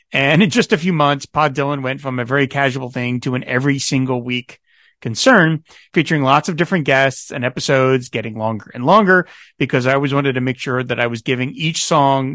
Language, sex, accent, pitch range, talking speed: English, male, American, 130-160 Hz, 215 wpm